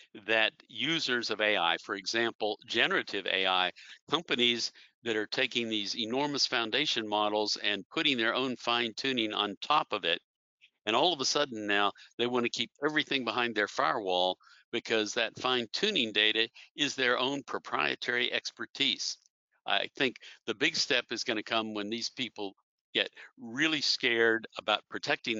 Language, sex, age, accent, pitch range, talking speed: English, male, 60-79, American, 105-130 Hz, 155 wpm